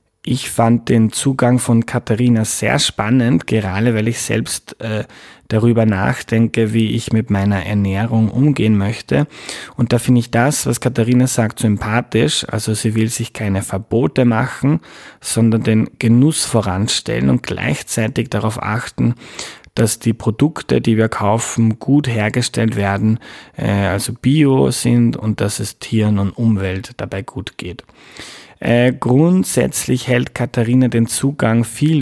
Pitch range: 110-125 Hz